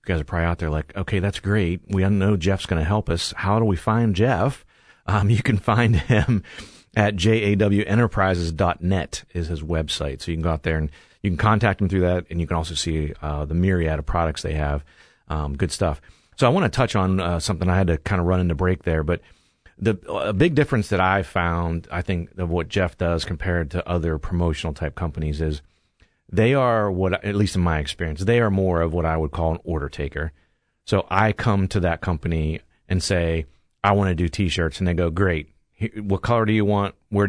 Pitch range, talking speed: 80-105 Hz, 225 wpm